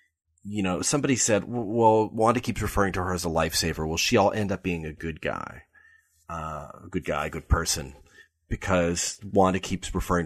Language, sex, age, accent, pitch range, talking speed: English, male, 30-49, American, 90-120 Hz, 185 wpm